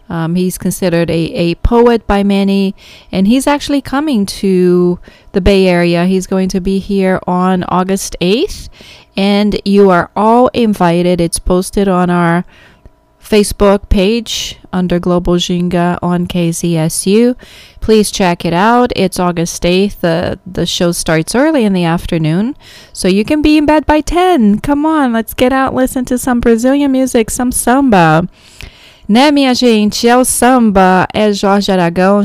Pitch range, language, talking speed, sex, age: 180-220 Hz, English, 155 wpm, female, 30-49